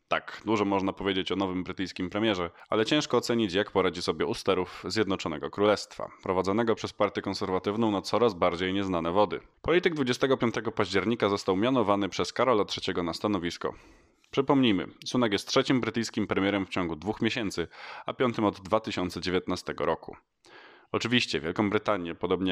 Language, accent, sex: Polish, native, male